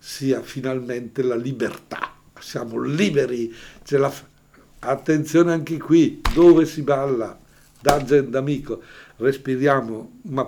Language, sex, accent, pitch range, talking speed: Italian, male, native, 135-165 Hz, 95 wpm